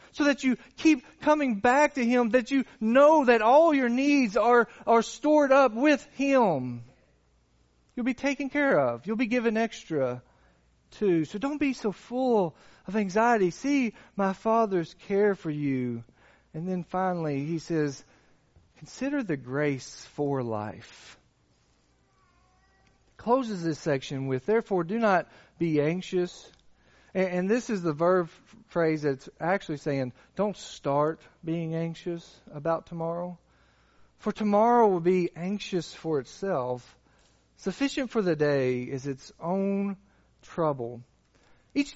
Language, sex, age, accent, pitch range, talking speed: English, male, 40-59, American, 145-240 Hz, 135 wpm